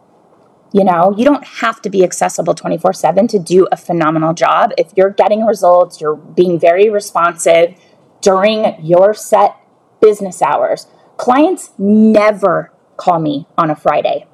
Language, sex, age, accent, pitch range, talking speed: English, female, 20-39, American, 170-220 Hz, 140 wpm